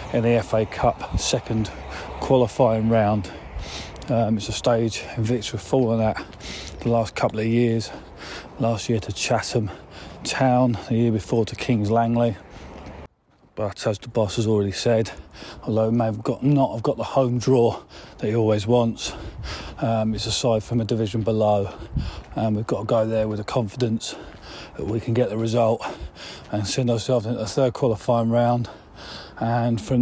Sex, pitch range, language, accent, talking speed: male, 110-125 Hz, English, British, 175 wpm